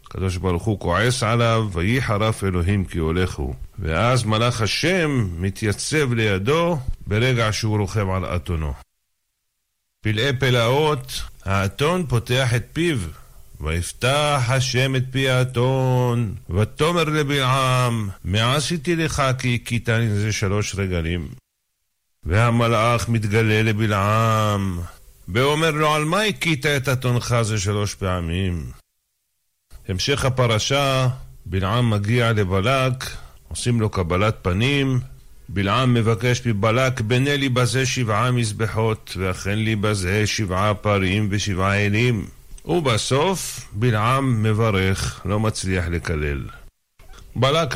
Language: Hebrew